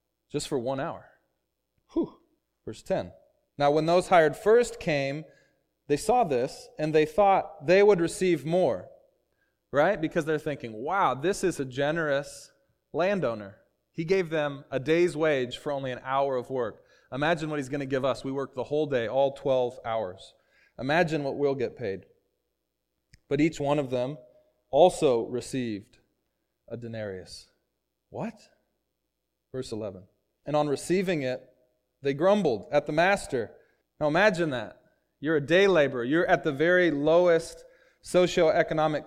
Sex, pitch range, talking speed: male, 135-175 Hz, 150 wpm